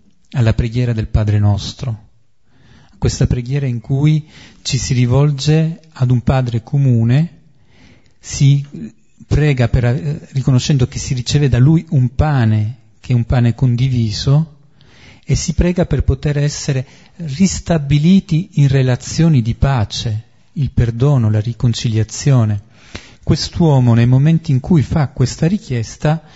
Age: 40-59